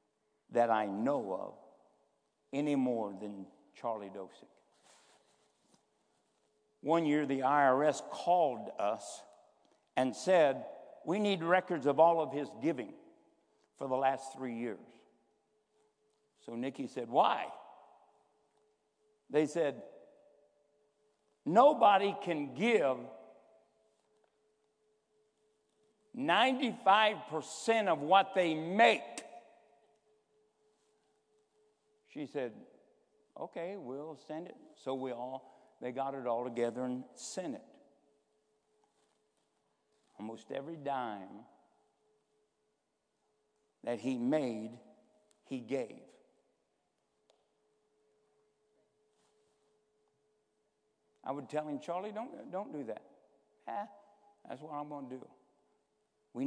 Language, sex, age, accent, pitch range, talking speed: English, male, 60-79, American, 135-215 Hz, 90 wpm